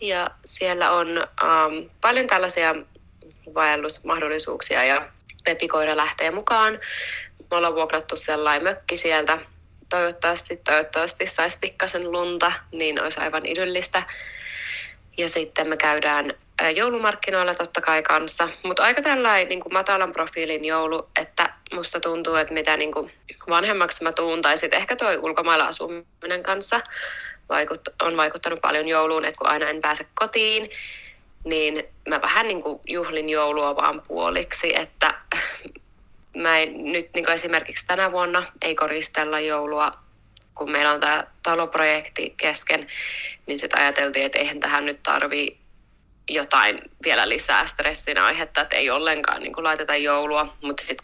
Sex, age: female, 20-39